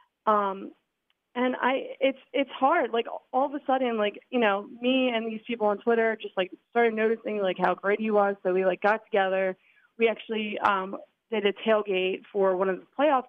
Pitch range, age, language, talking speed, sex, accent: 210-260 Hz, 20-39, English, 205 wpm, female, American